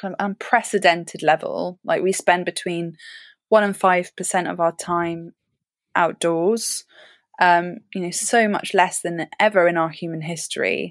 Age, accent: 20-39, British